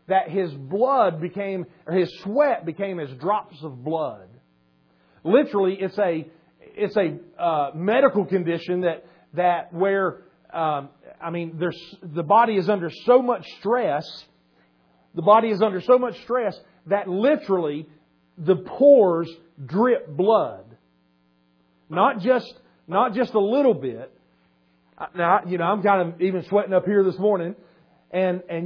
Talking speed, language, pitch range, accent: 140 wpm, English, 160-210 Hz, American